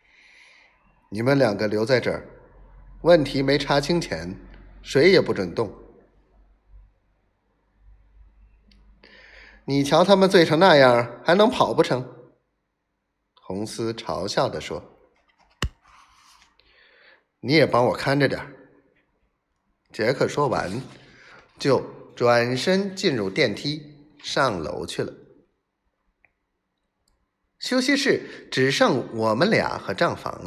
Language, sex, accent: Chinese, male, native